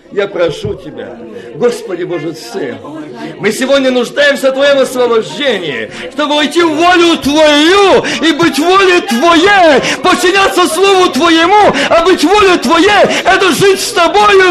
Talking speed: 130 wpm